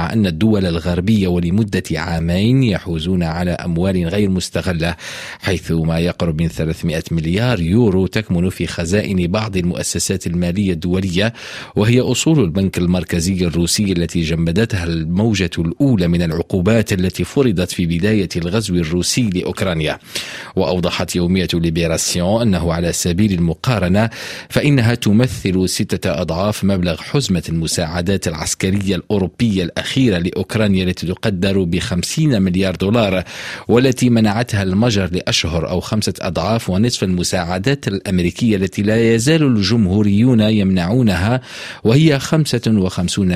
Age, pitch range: 40-59, 90-110 Hz